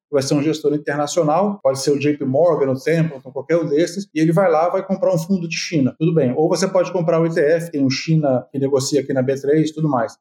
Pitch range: 150-185 Hz